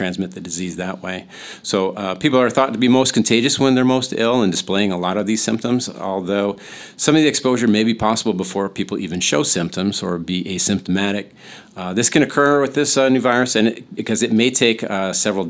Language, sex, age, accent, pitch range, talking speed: English, male, 40-59, American, 95-120 Hz, 225 wpm